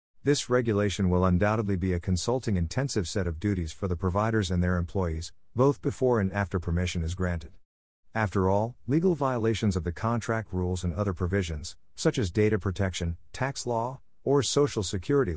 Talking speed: 170 wpm